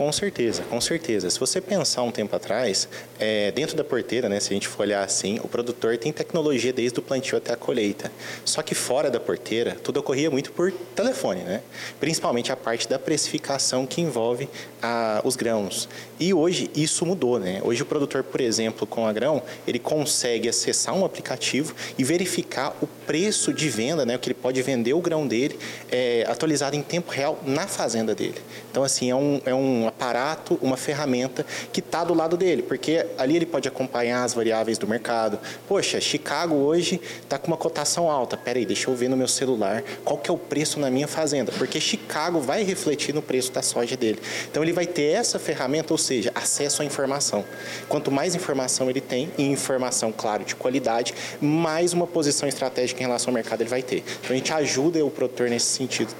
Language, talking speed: Portuguese, 200 wpm